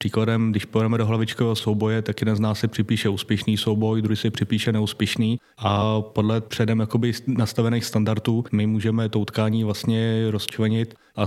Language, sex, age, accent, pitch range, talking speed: Czech, male, 20-39, native, 110-115 Hz, 165 wpm